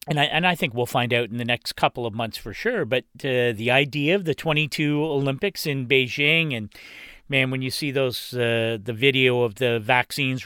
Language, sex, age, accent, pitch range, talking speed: English, male, 40-59, American, 120-155 Hz, 220 wpm